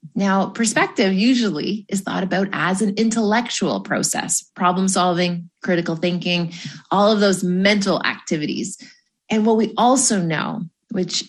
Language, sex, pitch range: English, female, 185-230 Hz